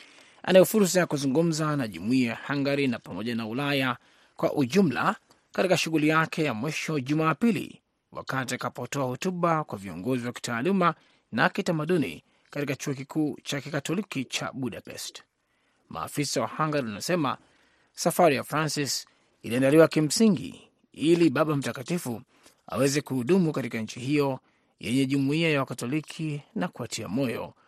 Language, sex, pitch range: Swahili, male, 130-165 Hz